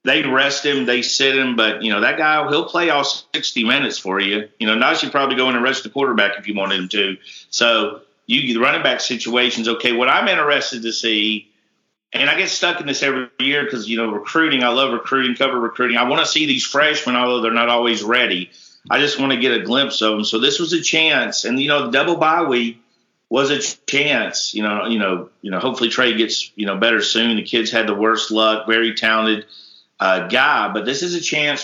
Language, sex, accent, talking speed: English, male, American, 240 wpm